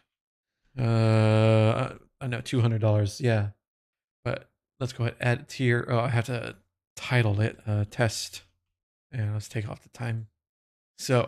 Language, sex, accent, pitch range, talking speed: English, male, American, 115-140 Hz, 160 wpm